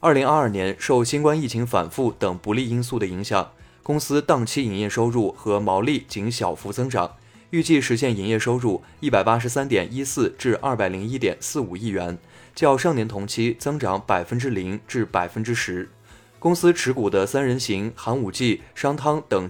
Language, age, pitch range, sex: Chinese, 20-39, 100-135 Hz, male